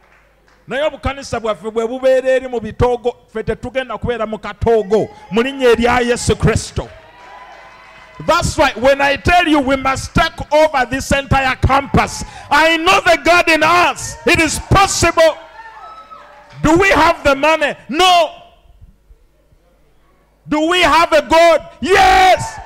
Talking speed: 90 wpm